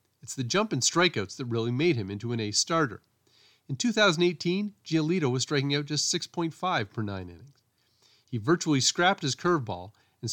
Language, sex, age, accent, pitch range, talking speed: English, male, 40-59, American, 115-155 Hz, 175 wpm